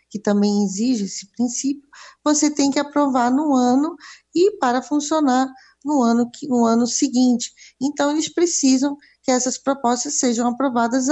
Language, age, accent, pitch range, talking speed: Portuguese, 20-39, Brazilian, 220-270 Hz, 145 wpm